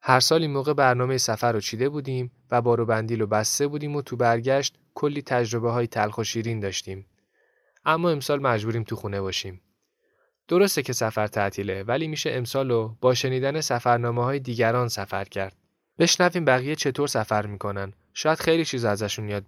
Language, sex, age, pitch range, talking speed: Persian, male, 10-29, 105-135 Hz, 170 wpm